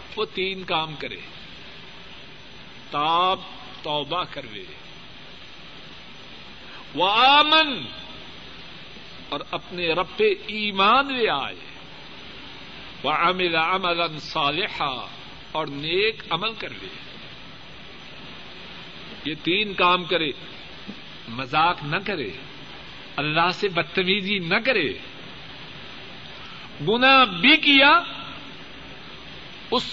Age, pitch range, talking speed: 50-69, 170-245 Hz, 80 wpm